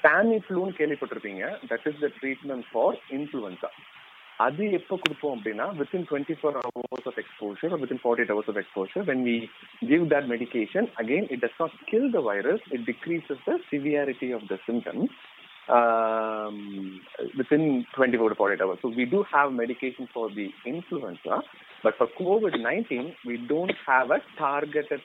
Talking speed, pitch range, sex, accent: 150 wpm, 115-145 Hz, male, native